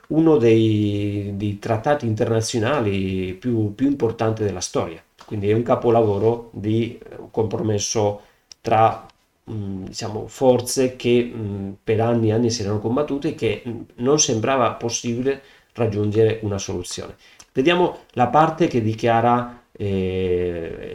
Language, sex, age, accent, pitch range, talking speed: Italian, male, 40-59, native, 105-130 Hz, 115 wpm